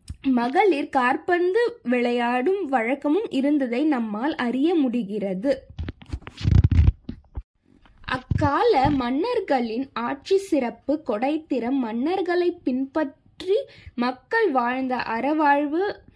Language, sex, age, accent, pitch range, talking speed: Tamil, female, 20-39, native, 250-340 Hz, 65 wpm